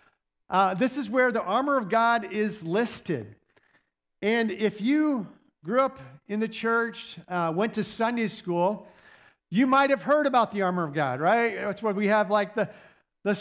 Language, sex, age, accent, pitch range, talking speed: English, male, 50-69, American, 165-225 Hz, 180 wpm